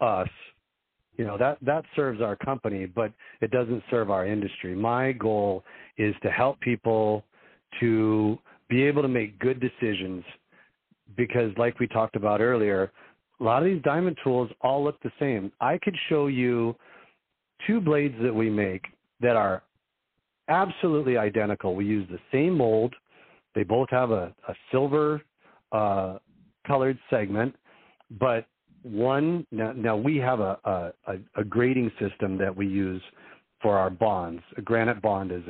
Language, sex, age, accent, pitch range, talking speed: English, male, 40-59, American, 100-130 Hz, 155 wpm